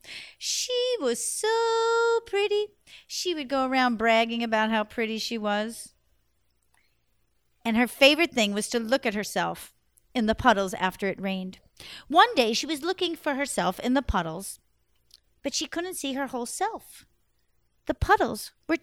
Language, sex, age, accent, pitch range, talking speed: English, female, 50-69, American, 215-325 Hz, 155 wpm